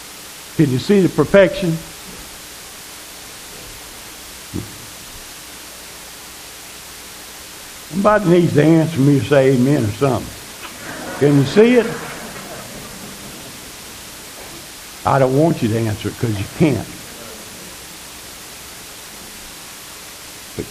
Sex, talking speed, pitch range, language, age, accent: male, 85 wpm, 100-160 Hz, English, 60-79, American